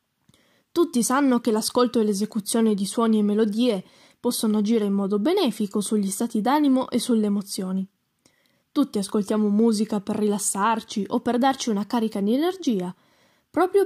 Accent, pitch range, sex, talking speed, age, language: native, 210-280 Hz, female, 145 wpm, 10-29, Italian